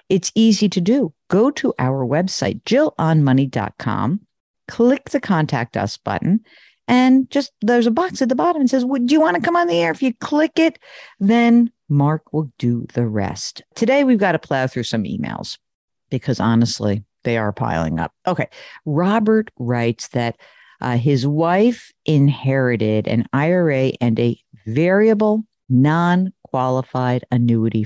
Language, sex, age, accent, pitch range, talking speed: English, female, 50-69, American, 130-190 Hz, 155 wpm